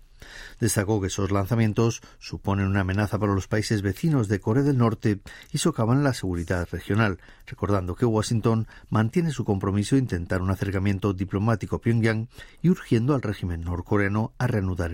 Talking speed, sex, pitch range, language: 160 wpm, male, 95-120 Hz, Spanish